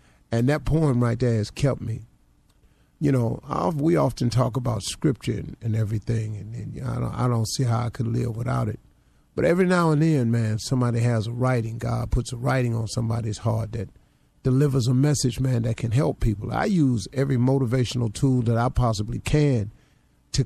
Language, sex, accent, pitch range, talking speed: English, male, American, 110-130 Hz, 195 wpm